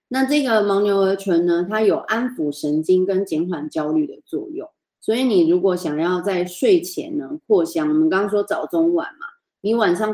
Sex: female